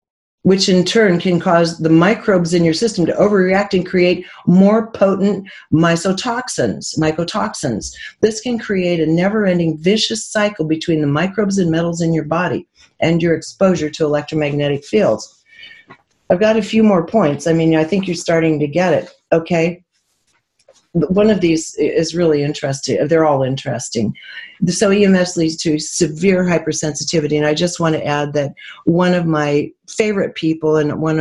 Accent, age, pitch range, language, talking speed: American, 50-69, 145-185 Hz, English, 160 wpm